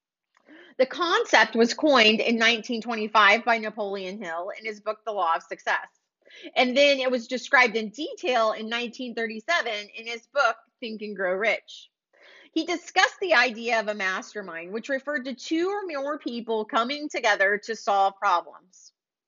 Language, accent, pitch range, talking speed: English, American, 215-285 Hz, 160 wpm